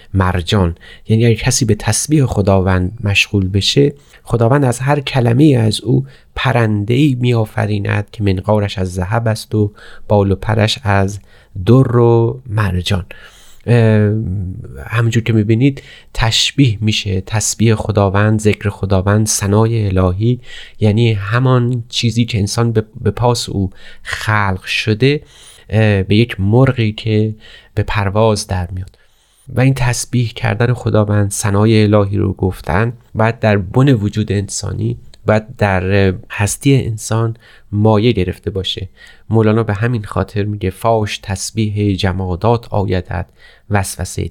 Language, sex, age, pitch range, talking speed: Persian, male, 30-49, 100-115 Hz, 125 wpm